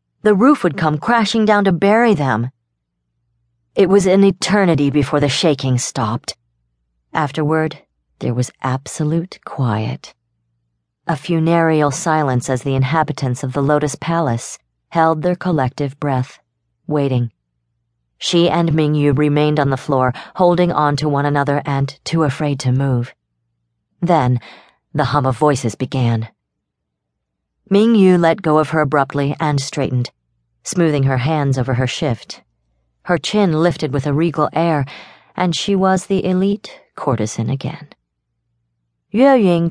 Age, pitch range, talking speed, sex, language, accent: 40-59, 125-165 Hz, 135 wpm, female, English, American